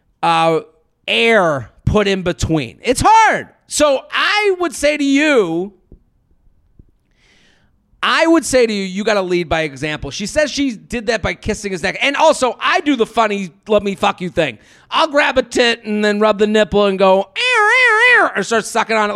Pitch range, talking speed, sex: 195-245 Hz, 195 wpm, male